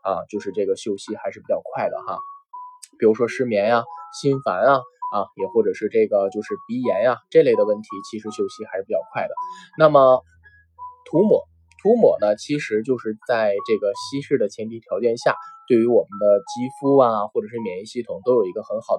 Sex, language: male, Chinese